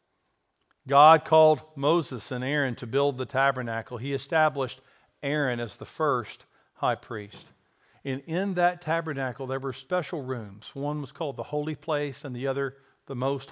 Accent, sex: American, male